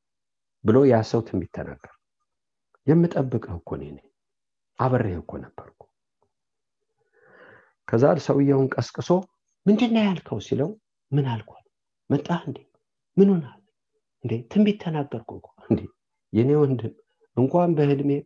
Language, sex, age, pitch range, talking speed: English, male, 50-69, 115-180 Hz, 115 wpm